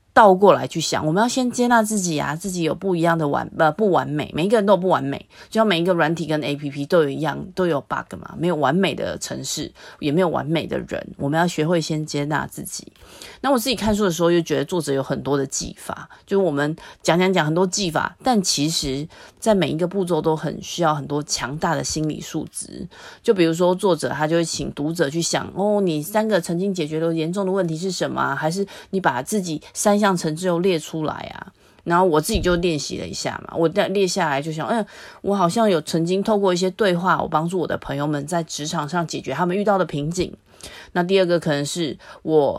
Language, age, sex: Chinese, 30-49, female